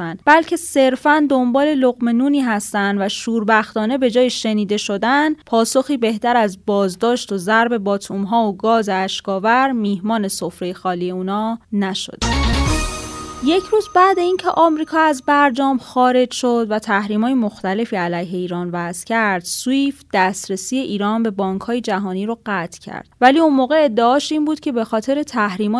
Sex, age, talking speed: female, 20-39, 145 wpm